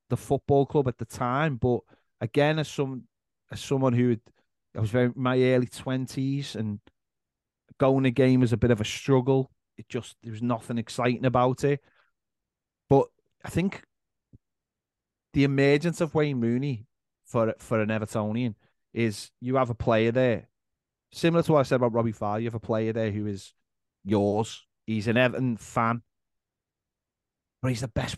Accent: British